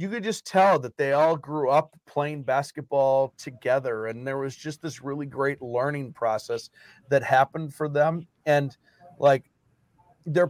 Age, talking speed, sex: 40-59, 160 wpm, male